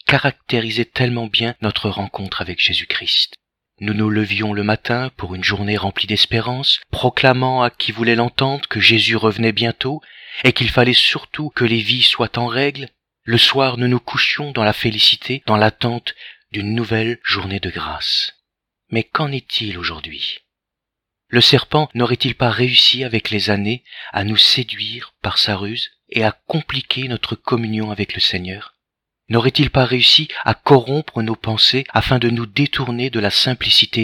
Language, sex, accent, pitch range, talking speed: French, male, French, 105-130 Hz, 160 wpm